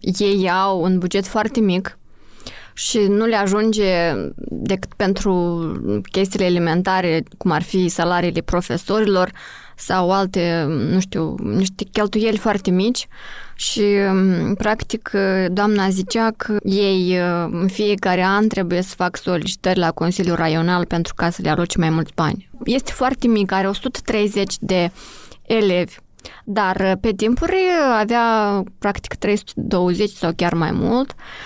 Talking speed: 130 wpm